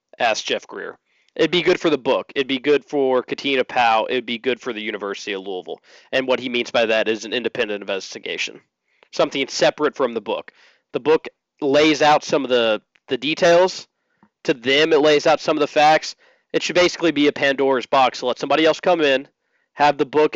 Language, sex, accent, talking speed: English, male, American, 210 wpm